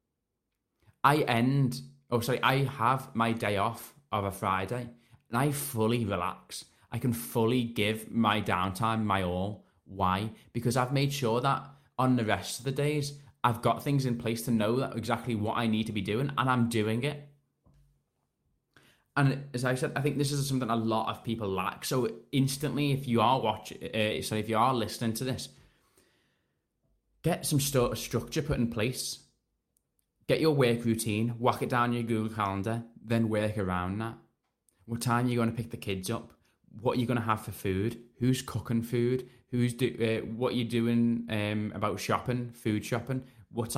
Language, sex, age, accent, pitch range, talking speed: English, male, 10-29, British, 110-130 Hz, 190 wpm